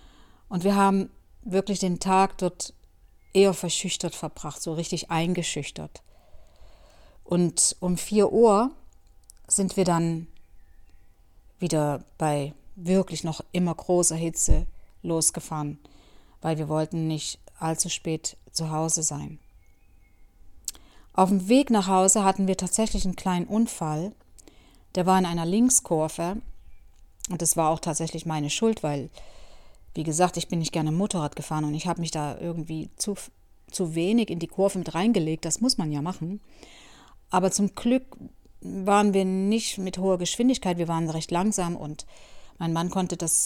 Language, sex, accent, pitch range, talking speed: German, female, German, 155-190 Hz, 145 wpm